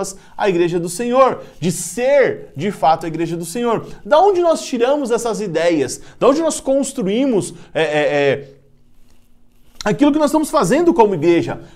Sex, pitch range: male, 145-205 Hz